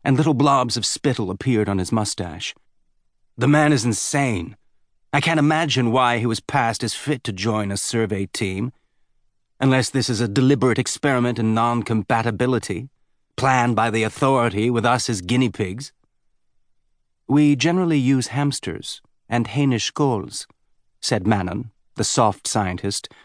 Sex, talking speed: male, 145 wpm